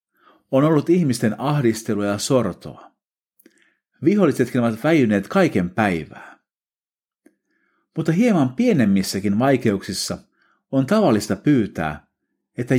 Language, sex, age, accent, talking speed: Finnish, male, 50-69, native, 90 wpm